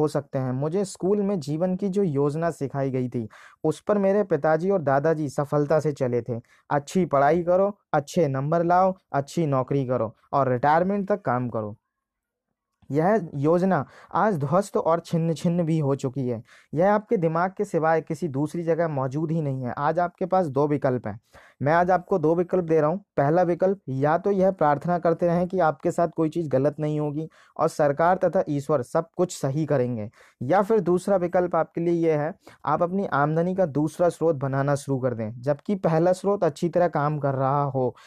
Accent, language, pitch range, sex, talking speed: native, Hindi, 145-185 Hz, male, 195 wpm